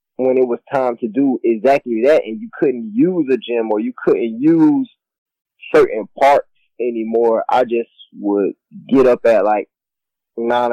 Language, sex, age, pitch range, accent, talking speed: English, male, 20-39, 110-135 Hz, American, 160 wpm